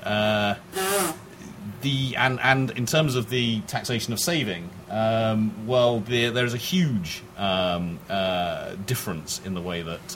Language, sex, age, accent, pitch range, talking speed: English, male, 40-59, British, 90-120 Hz, 150 wpm